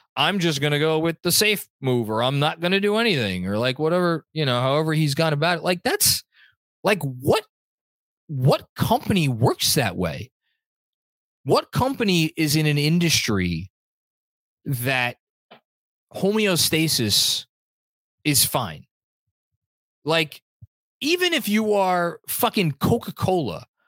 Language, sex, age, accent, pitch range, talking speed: English, male, 20-39, American, 135-210 Hz, 130 wpm